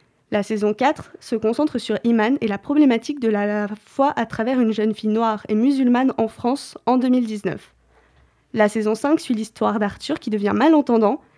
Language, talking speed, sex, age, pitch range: French, 180 wpm, female, 20-39, 215-265 Hz